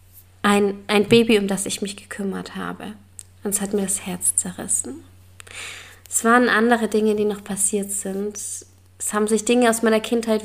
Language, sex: German, female